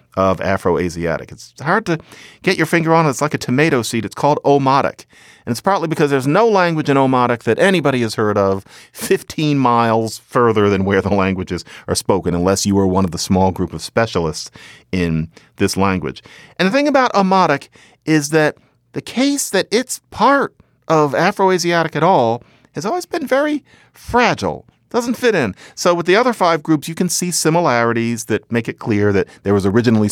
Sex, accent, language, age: male, American, English, 40-59